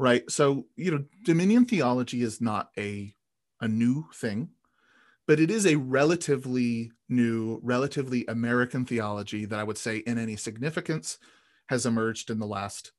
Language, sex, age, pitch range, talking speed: English, male, 30-49, 110-140 Hz, 150 wpm